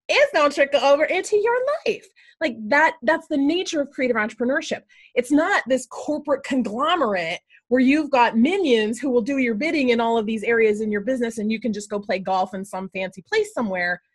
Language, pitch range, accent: English, 230-330 Hz, American